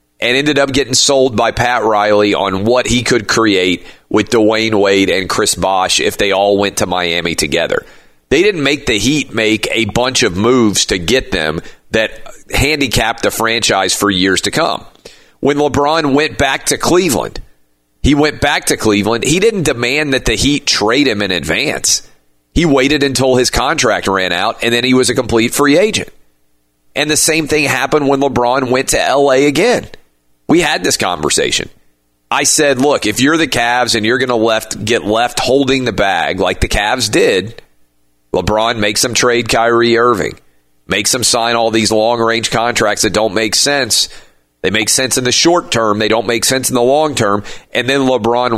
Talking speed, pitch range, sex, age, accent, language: 190 wpm, 100-130 Hz, male, 40-59, American, English